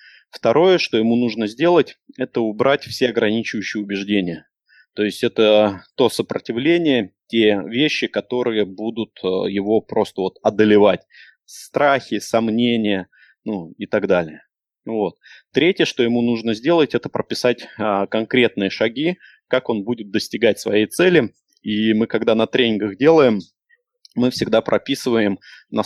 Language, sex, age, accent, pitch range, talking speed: Russian, male, 20-39, native, 105-130 Hz, 125 wpm